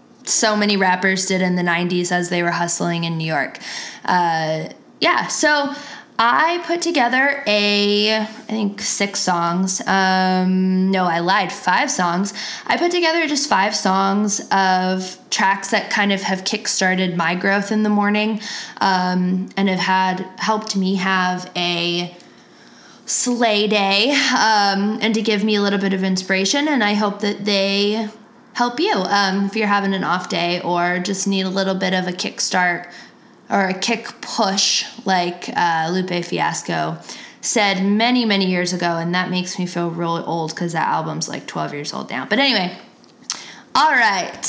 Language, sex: English, female